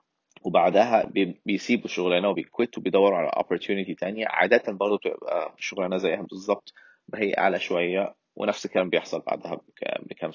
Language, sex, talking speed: Arabic, male, 135 wpm